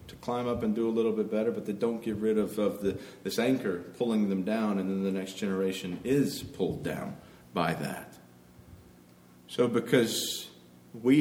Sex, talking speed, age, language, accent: male, 180 wpm, 40-59, English, American